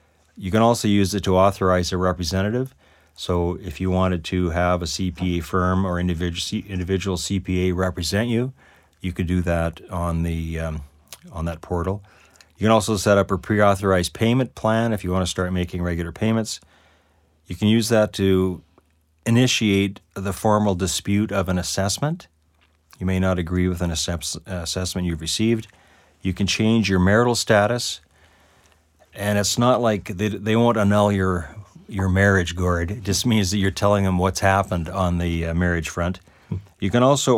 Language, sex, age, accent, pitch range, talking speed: English, male, 40-59, American, 85-100 Hz, 170 wpm